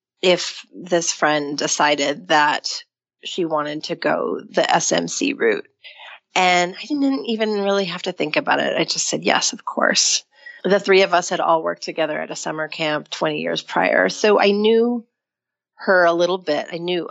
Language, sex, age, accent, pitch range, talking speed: English, female, 30-49, American, 165-205 Hz, 180 wpm